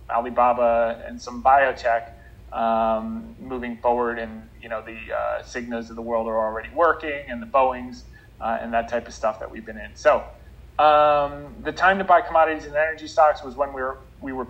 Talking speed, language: 200 wpm, English